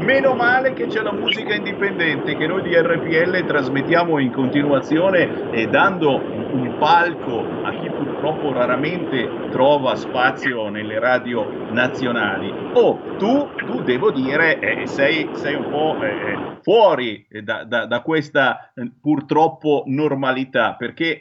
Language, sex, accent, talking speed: Italian, male, native, 135 wpm